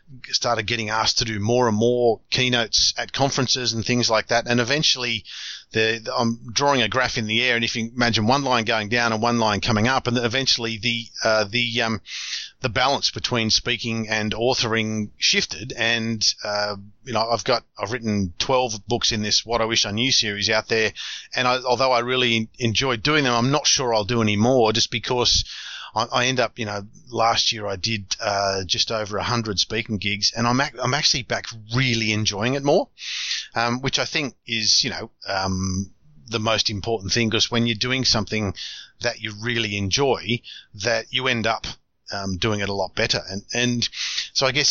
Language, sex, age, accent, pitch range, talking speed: English, male, 40-59, Australian, 110-125 Hz, 205 wpm